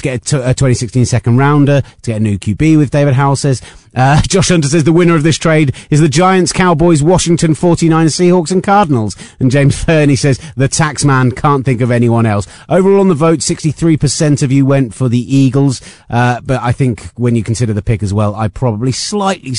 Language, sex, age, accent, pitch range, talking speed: English, male, 30-49, British, 120-160 Hz, 220 wpm